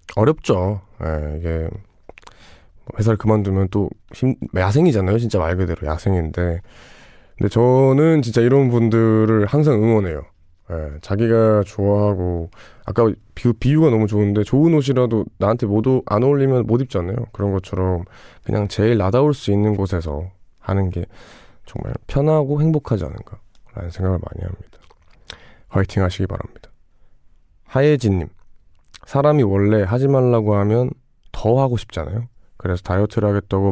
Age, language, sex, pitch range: 20-39, Korean, male, 95-120 Hz